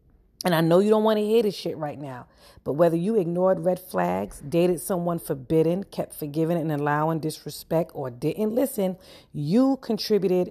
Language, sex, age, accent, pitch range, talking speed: English, female, 40-59, American, 145-210 Hz, 175 wpm